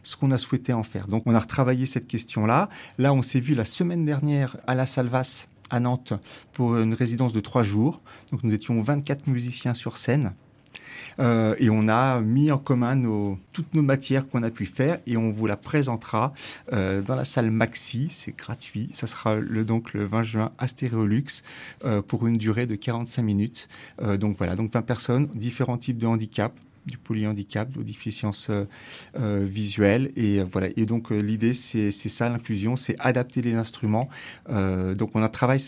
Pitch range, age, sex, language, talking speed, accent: 110-130 Hz, 30-49, male, English, 195 wpm, French